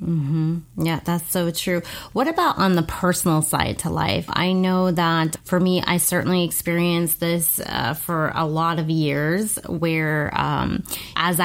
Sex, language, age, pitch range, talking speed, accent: female, English, 30-49, 160-180 Hz, 160 wpm, American